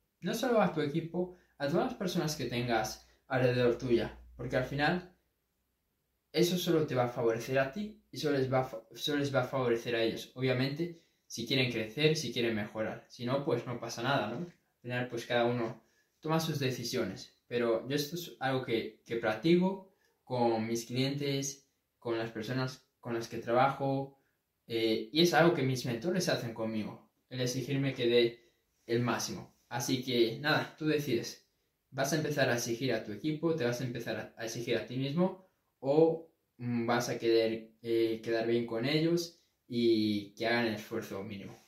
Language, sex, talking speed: Spanish, male, 185 wpm